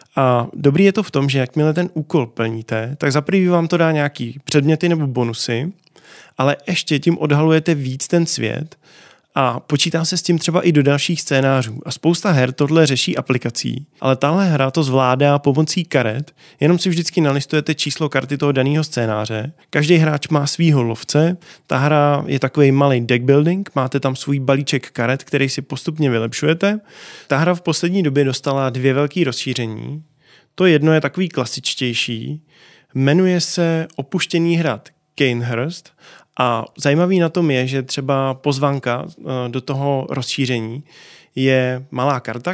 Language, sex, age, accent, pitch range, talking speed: Czech, male, 20-39, native, 130-160 Hz, 160 wpm